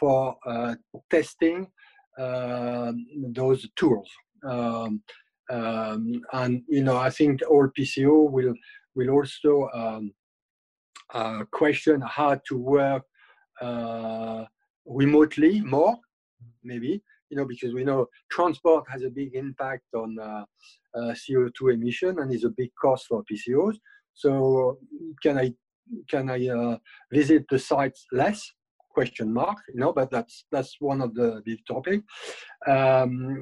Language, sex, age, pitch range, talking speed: English, male, 50-69, 120-160 Hz, 130 wpm